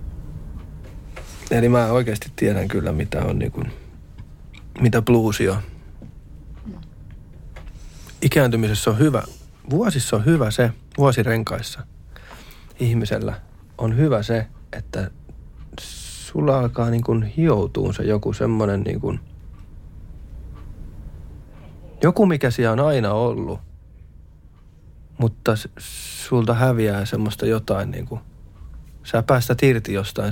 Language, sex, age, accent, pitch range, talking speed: Finnish, male, 40-59, native, 90-120 Hz, 100 wpm